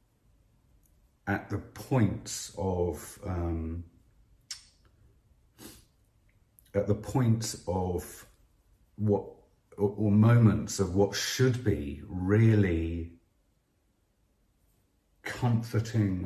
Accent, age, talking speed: British, 50-69, 70 wpm